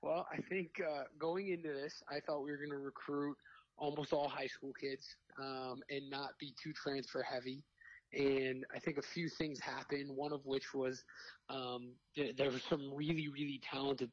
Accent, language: American, English